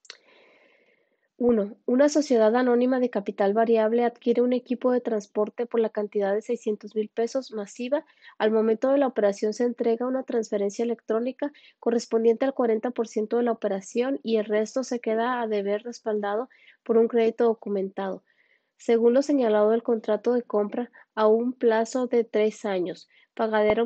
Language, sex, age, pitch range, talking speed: Spanish, female, 20-39, 215-255 Hz, 155 wpm